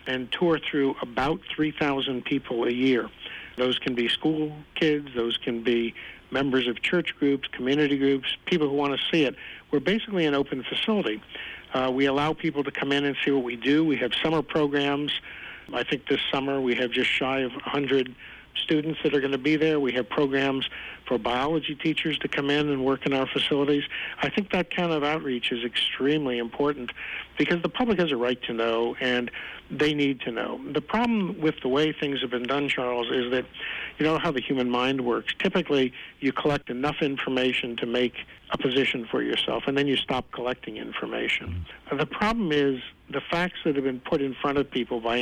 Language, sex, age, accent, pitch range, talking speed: English, male, 50-69, American, 125-150 Hz, 200 wpm